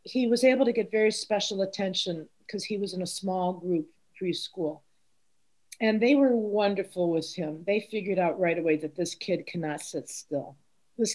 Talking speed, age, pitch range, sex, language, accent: 185 wpm, 50-69, 170-220 Hz, female, English, American